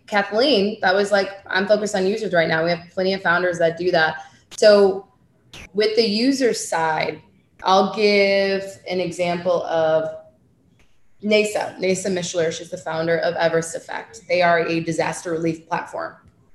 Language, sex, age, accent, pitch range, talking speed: English, female, 20-39, American, 165-195 Hz, 155 wpm